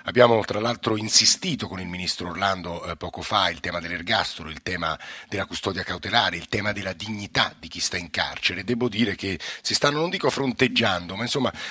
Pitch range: 95-120 Hz